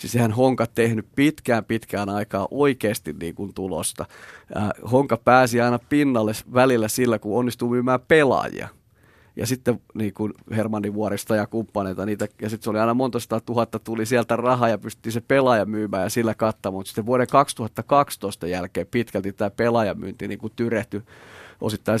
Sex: male